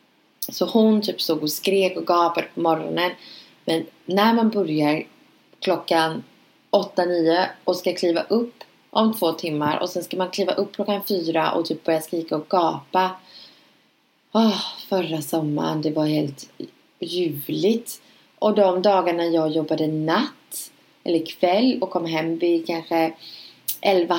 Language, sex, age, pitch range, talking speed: English, female, 20-39, 155-200 Hz, 145 wpm